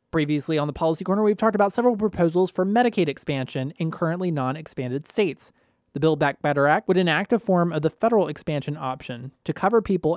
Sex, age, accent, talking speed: male, 20-39, American, 200 wpm